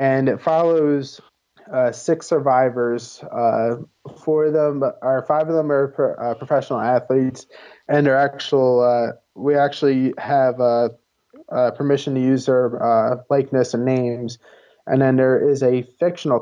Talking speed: 155 wpm